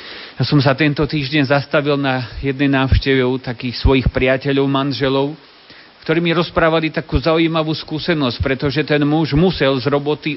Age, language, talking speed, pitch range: 40-59, Slovak, 145 wpm, 135-170 Hz